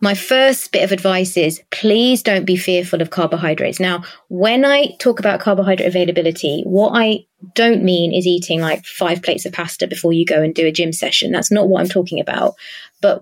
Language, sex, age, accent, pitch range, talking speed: English, female, 20-39, British, 180-210 Hz, 205 wpm